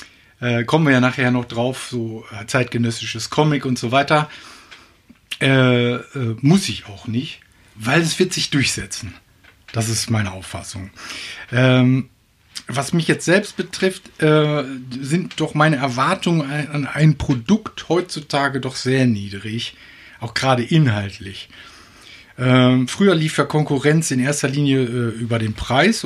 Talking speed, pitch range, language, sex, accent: 140 wpm, 115-145 Hz, German, male, German